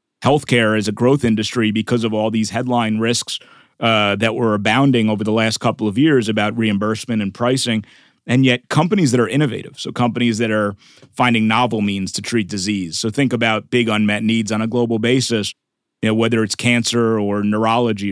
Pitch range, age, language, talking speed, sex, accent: 110-130 Hz, 30-49, English, 190 wpm, male, American